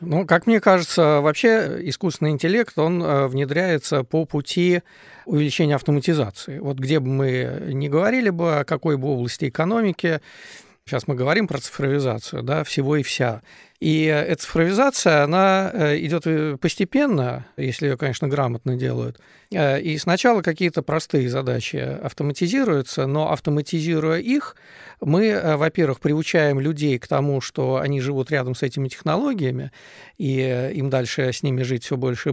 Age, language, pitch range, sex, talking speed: 40-59, Russian, 140-170 Hz, male, 140 wpm